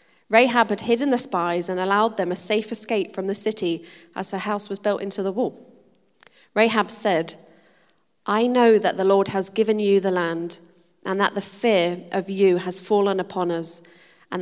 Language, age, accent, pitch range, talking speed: English, 30-49, British, 180-215 Hz, 185 wpm